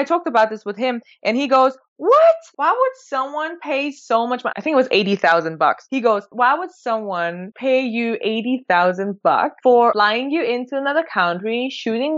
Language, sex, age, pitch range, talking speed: English, female, 20-39, 180-250 Hz, 190 wpm